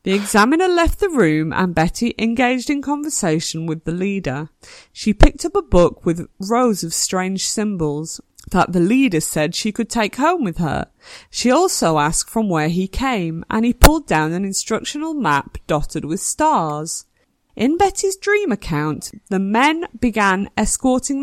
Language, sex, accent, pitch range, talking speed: English, female, British, 165-240 Hz, 165 wpm